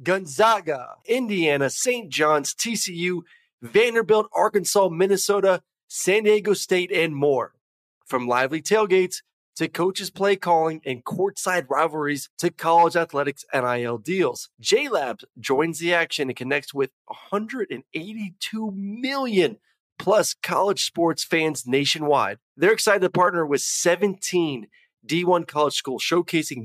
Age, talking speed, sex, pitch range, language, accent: 30-49, 115 wpm, male, 145-195 Hz, English, American